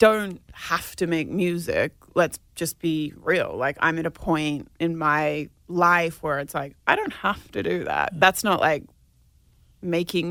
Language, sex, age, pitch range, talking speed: English, female, 30-49, 160-180 Hz, 175 wpm